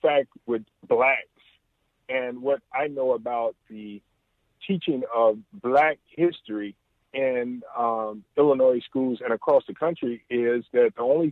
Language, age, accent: English, 50-69, American